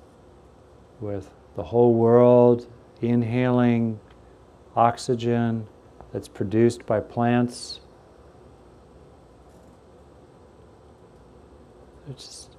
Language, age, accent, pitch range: English, 50-69, American, 85-125 Hz